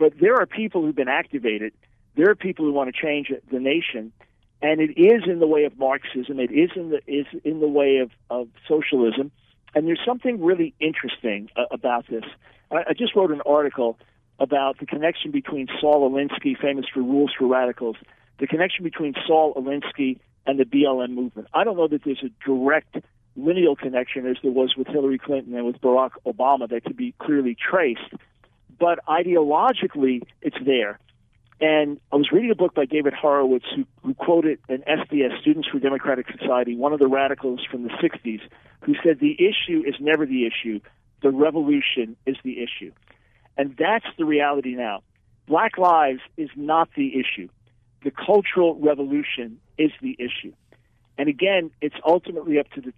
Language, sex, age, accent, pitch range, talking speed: English, male, 50-69, American, 125-155 Hz, 180 wpm